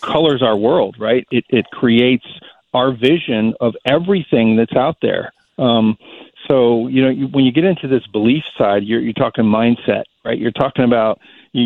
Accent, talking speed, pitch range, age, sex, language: American, 180 wpm, 110-135 Hz, 50-69, male, English